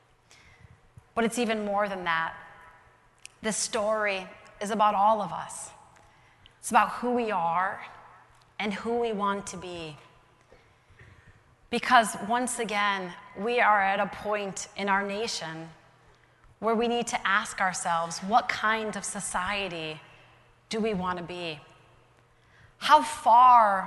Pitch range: 170-215 Hz